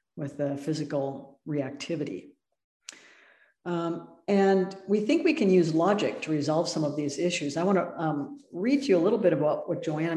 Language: English